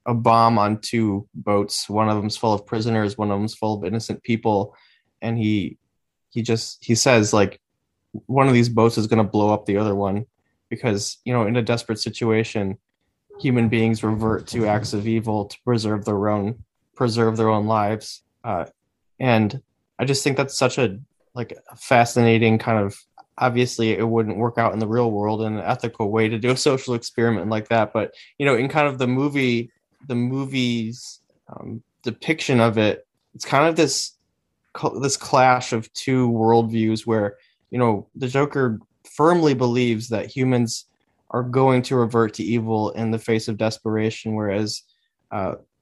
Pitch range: 110-120 Hz